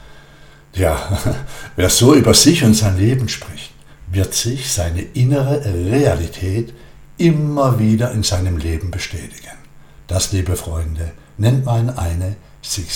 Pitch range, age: 85-120 Hz, 60-79